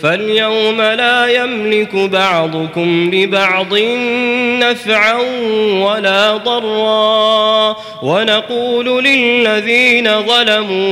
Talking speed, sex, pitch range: 60 wpm, male, 190-220 Hz